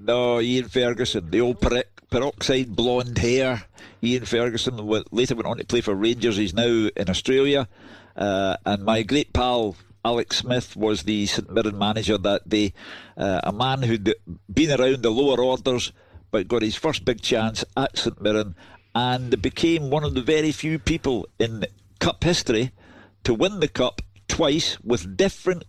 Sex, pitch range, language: male, 105-125 Hz, English